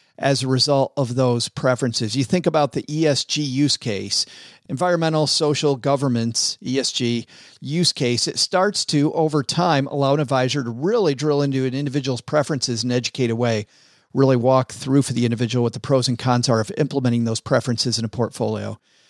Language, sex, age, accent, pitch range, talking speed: English, male, 40-59, American, 125-160 Hz, 180 wpm